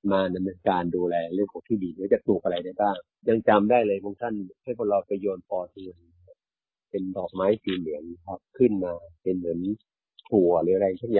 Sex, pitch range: male, 90-115 Hz